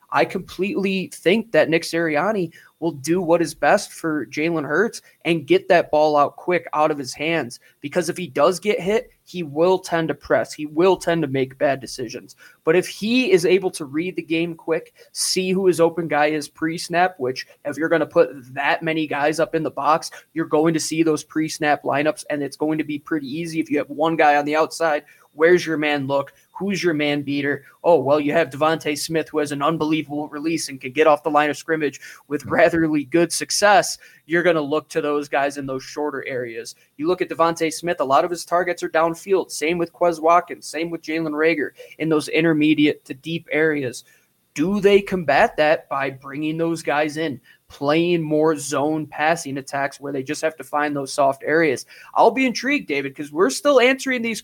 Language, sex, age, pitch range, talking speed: English, male, 20-39, 150-170 Hz, 215 wpm